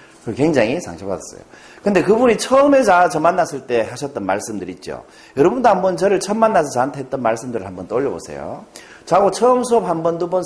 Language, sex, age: Korean, male, 40-59